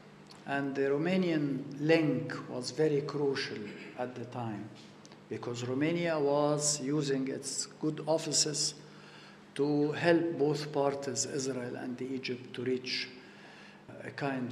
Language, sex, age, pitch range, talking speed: English, male, 50-69, 135-165 Hz, 115 wpm